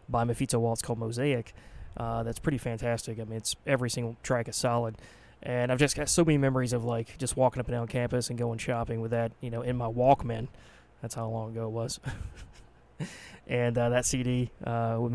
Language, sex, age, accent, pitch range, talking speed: English, male, 20-39, American, 120-135 Hz, 215 wpm